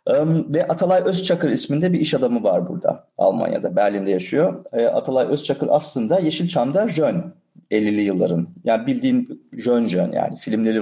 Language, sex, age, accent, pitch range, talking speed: Turkish, male, 40-59, native, 110-160 Hz, 140 wpm